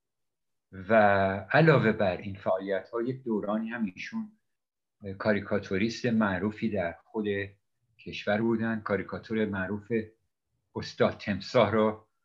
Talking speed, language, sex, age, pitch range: 100 wpm, Persian, male, 50-69, 100-115 Hz